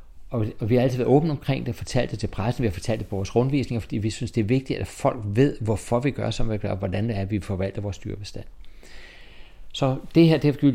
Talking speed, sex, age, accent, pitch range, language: 275 wpm, male, 60-79, native, 95-120 Hz, Danish